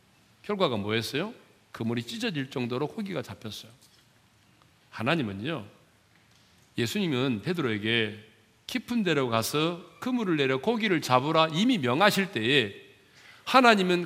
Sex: male